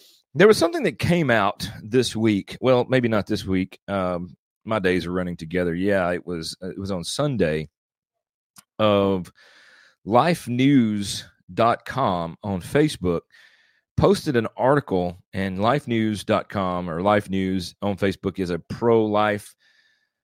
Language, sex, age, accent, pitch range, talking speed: English, male, 30-49, American, 95-125 Hz, 135 wpm